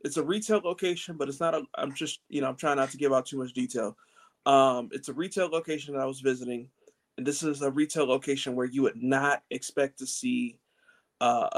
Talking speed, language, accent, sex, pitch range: 230 wpm, English, American, male, 130-185 Hz